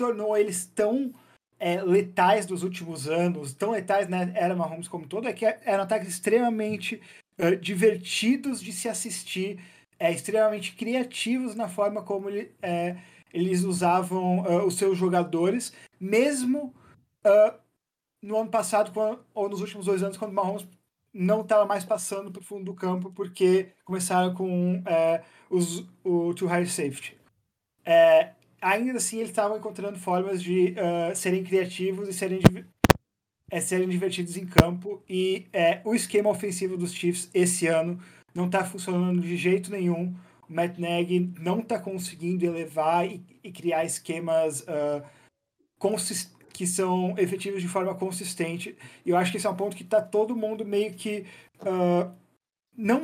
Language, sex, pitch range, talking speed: Portuguese, male, 180-210 Hz, 155 wpm